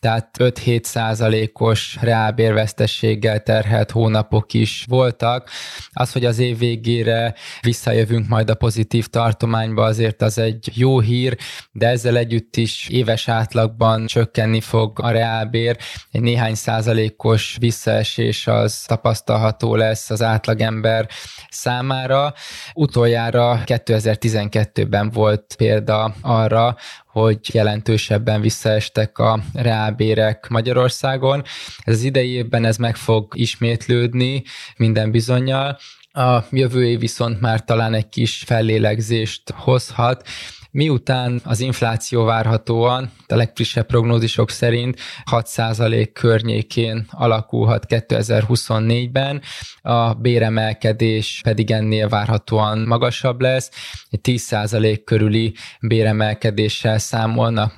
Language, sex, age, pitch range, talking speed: Hungarian, male, 20-39, 110-120 Hz, 100 wpm